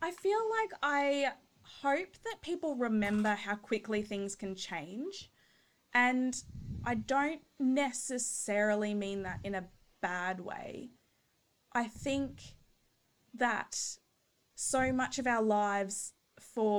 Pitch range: 200-250 Hz